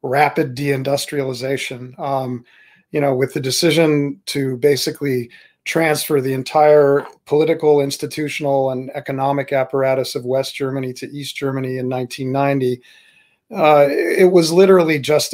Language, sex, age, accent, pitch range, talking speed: English, male, 40-59, American, 135-150 Hz, 115 wpm